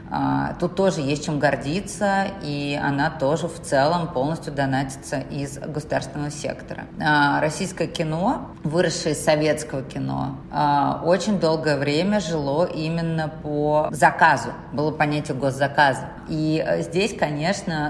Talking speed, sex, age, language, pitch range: 115 wpm, female, 30-49, Russian, 145-175 Hz